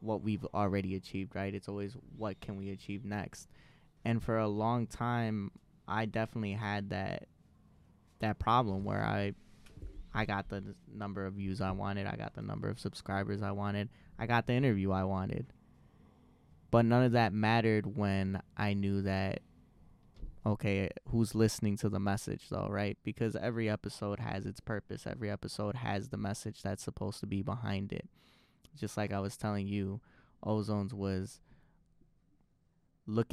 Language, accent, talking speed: English, American, 160 wpm